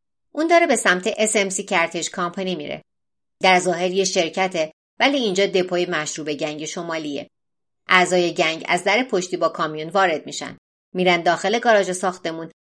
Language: Persian